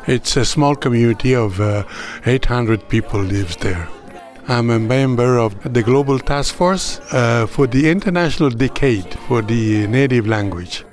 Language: English